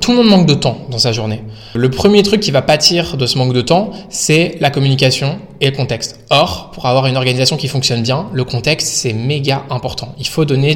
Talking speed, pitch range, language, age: 235 wpm, 120-160 Hz, French, 20-39